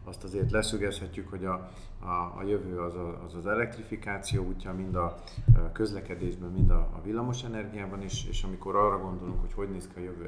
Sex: male